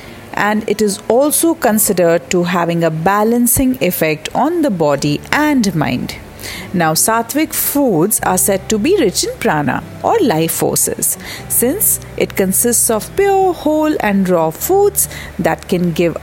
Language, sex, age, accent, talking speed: English, female, 40-59, Indian, 150 wpm